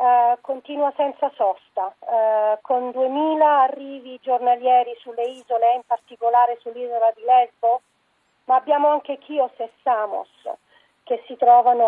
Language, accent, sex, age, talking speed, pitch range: Italian, native, female, 40-59, 115 wpm, 235-280 Hz